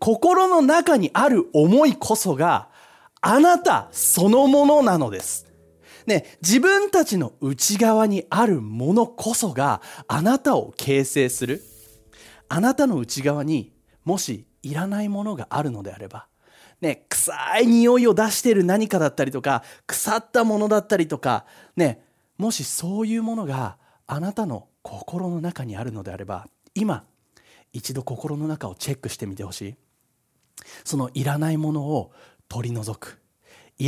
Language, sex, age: Japanese, male, 30-49